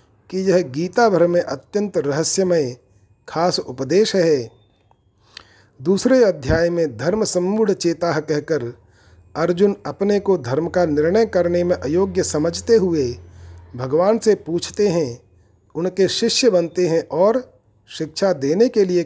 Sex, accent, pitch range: male, native, 135-190 Hz